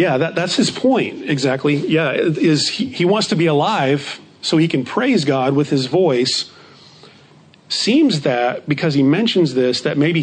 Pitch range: 140-170 Hz